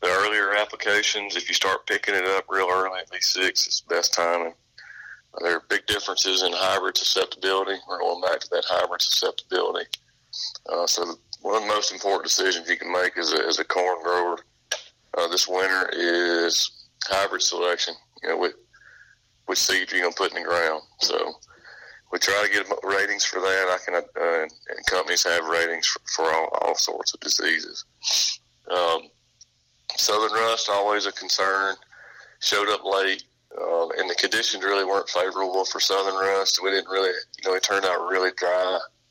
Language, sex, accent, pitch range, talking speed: English, male, American, 90-110 Hz, 185 wpm